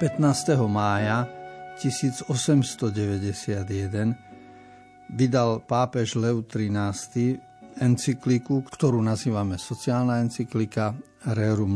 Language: Slovak